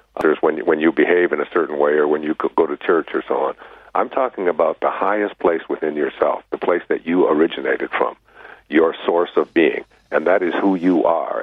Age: 50-69